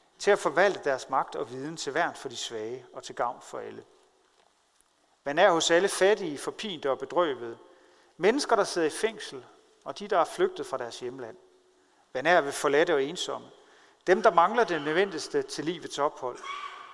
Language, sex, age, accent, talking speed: Danish, male, 40-59, native, 185 wpm